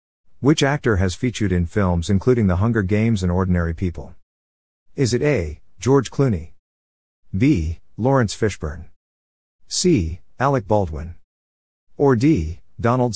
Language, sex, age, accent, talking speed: English, male, 50-69, American, 125 wpm